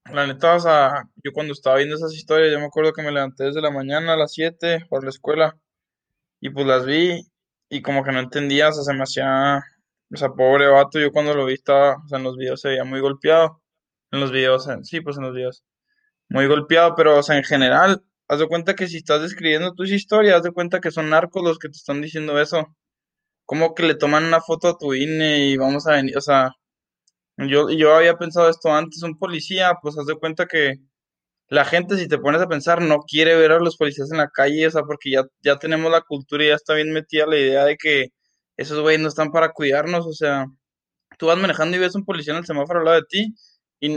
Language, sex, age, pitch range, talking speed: Spanish, male, 20-39, 140-165 Hz, 245 wpm